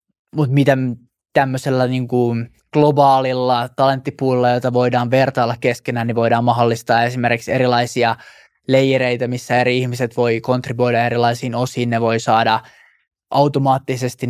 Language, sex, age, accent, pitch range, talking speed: Finnish, male, 20-39, native, 120-135 Hz, 120 wpm